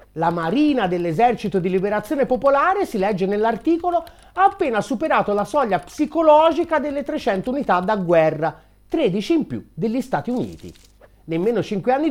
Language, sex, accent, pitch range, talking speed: Italian, male, native, 170-265 Hz, 145 wpm